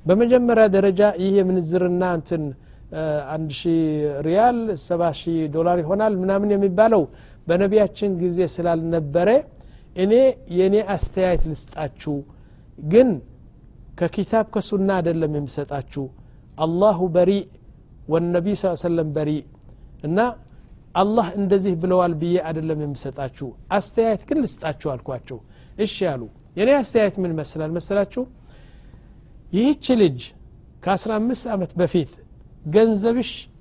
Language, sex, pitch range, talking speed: Amharic, male, 150-200 Hz, 100 wpm